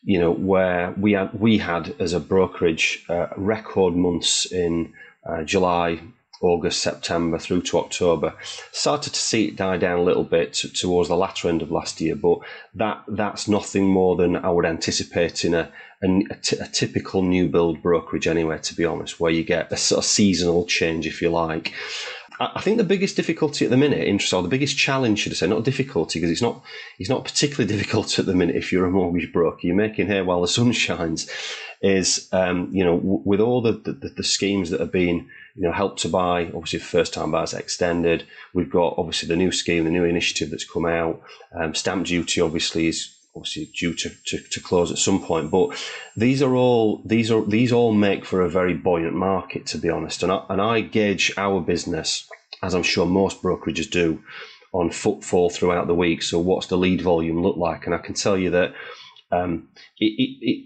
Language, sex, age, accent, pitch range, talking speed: English, male, 30-49, British, 85-110 Hz, 205 wpm